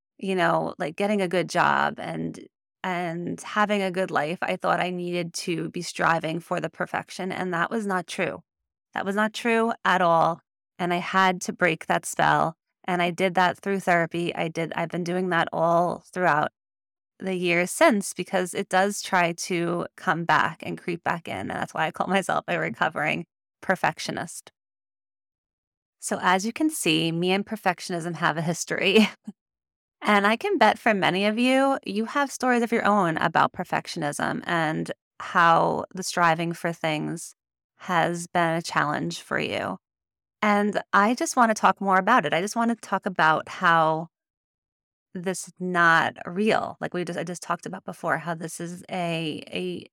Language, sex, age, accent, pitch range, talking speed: English, female, 20-39, American, 165-200 Hz, 180 wpm